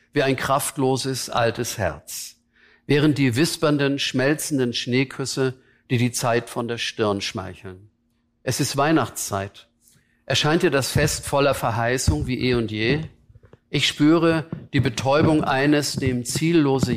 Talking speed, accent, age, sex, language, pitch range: 130 wpm, German, 50-69, male, German, 115-140 Hz